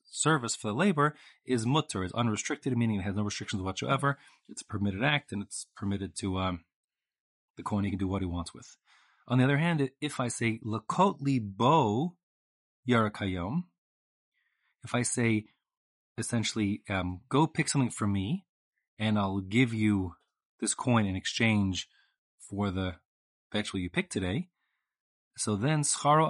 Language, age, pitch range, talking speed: English, 30-49, 95-125 Hz, 155 wpm